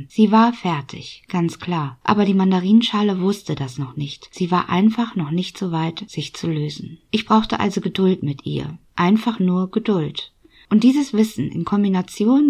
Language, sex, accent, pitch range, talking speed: German, female, German, 165-220 Hz, 175 wpm